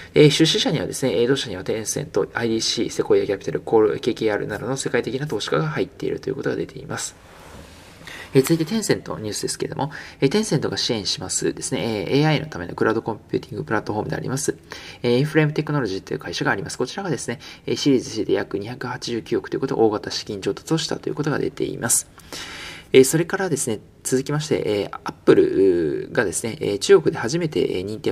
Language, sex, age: Japanese, male, 20-39